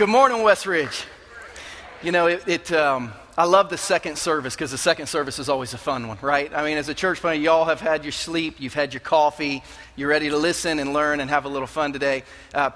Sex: male